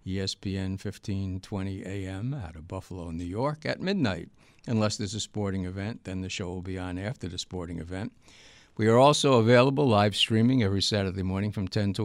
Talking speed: 185 wpm